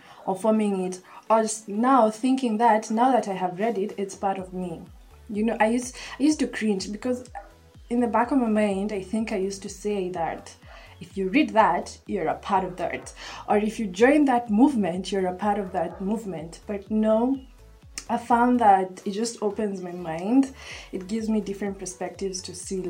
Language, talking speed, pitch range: English, 205 wpm, 190-240 Hz